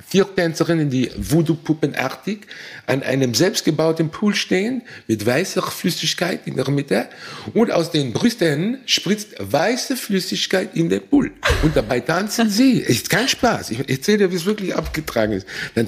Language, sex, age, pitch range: German, male, 60-79, 100-165 Hz